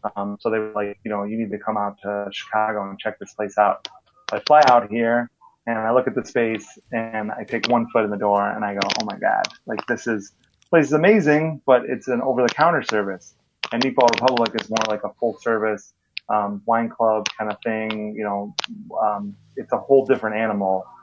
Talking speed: 220 wpm